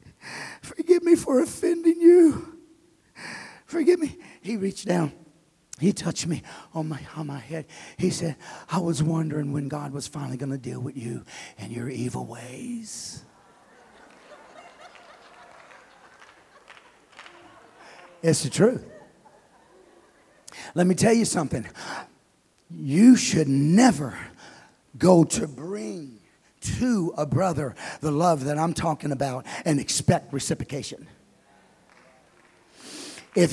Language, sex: English, male